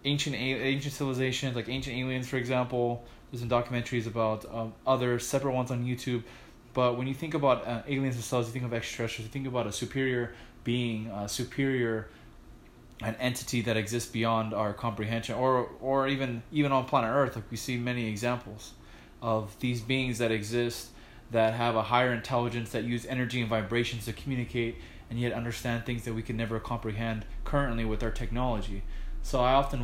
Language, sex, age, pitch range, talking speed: English, male, 20-39, 110-130 Hz, 180 wpm